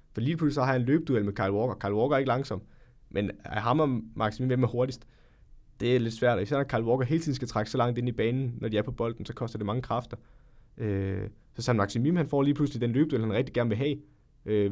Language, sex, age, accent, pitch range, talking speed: Danish, male, 20-39, native, 105-125 Hz, 280 wpm